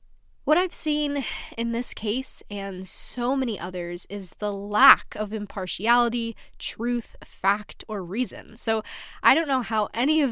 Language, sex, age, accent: English, female, 10-29, American